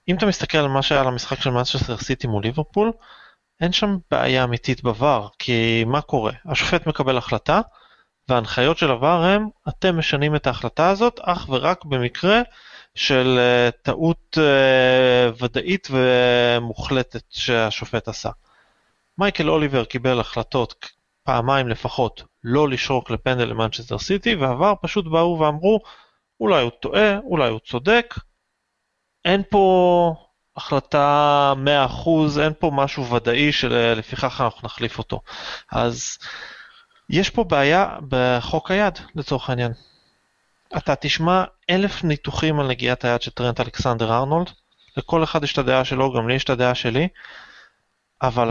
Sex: male